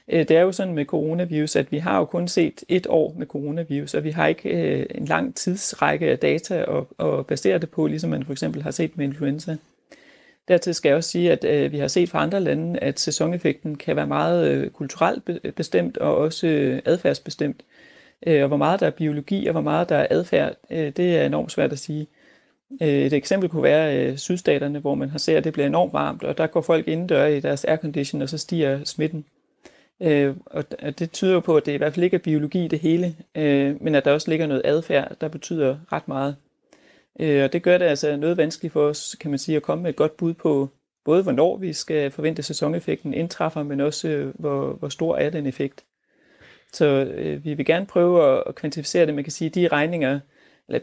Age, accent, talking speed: 30-49, native, 215 wpm